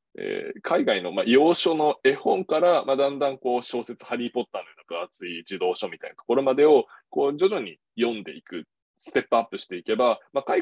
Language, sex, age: Japanese, male, 20-39